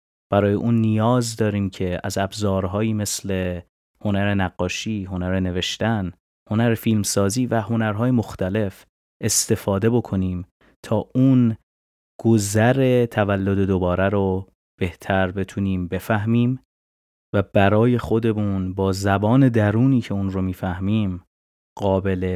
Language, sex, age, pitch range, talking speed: Persian, male, 30-49, 95-115 Hz, 105 wpm